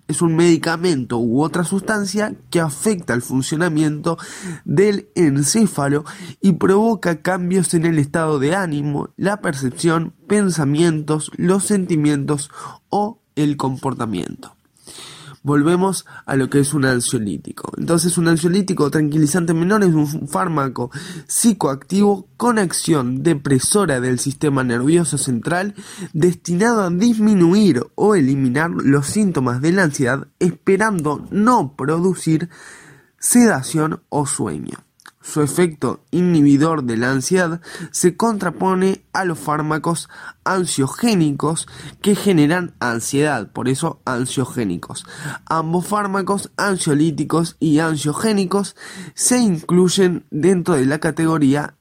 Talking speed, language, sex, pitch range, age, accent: 110 wpm, Spanish, male, 145-185 Hz, 20-39, Argentinian